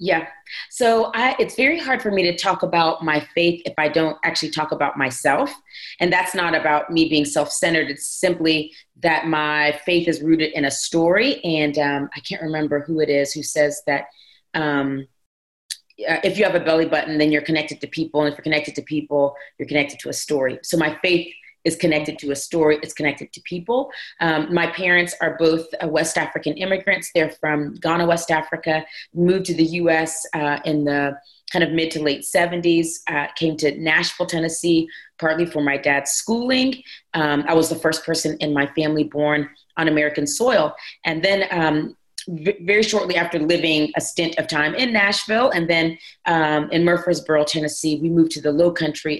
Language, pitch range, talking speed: English, 150-170 Hz, 190 wpm